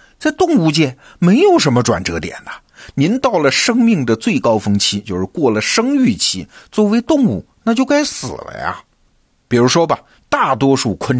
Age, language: 50-69, Chinese